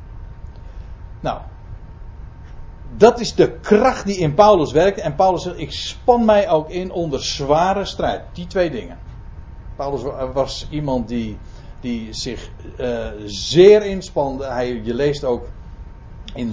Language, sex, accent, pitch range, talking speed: Dutch, male, Dutch, 105-150 Hz, 130 wpm